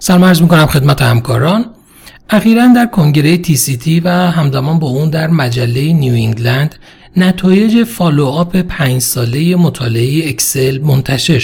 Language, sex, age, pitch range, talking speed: Persian, male, 40-59, 130-180 Hz, 130 wpm